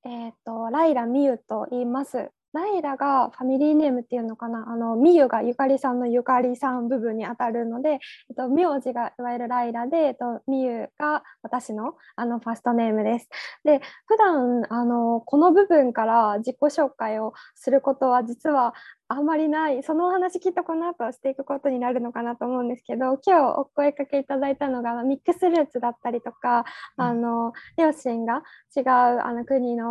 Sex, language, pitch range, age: female, Japanese, 235-285 Hz, 20-39